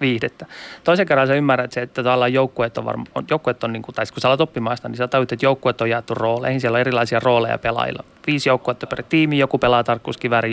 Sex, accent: male, native